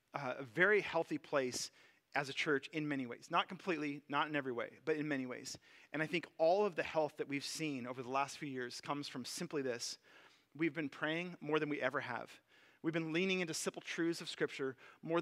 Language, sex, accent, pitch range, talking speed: English, male, American, 145-180 Hz, 225 wpm